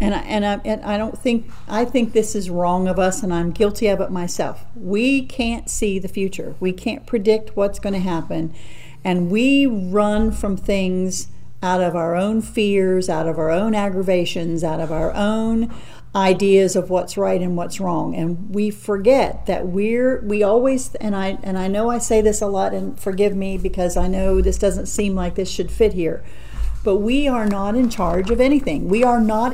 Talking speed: 205 wpm